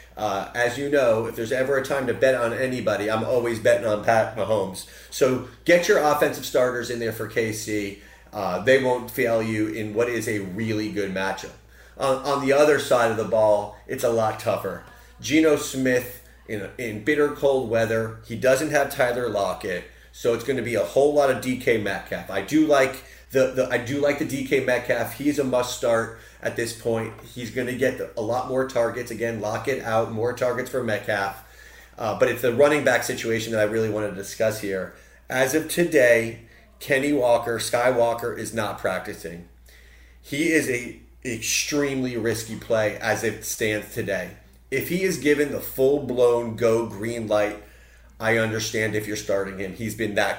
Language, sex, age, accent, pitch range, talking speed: English, male, 30-49, American, 110-130 Hz, 190 wpm